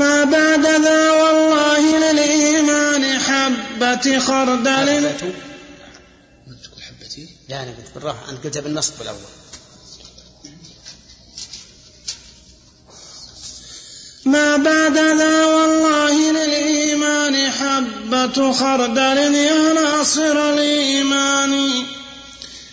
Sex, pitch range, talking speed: male, 270-295 Hz, 40 wpm